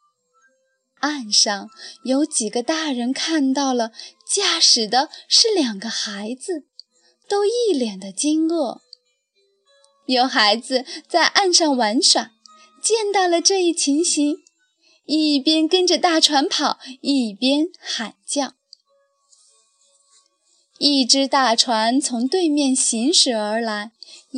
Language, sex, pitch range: Chinese, female, 235-320 Hz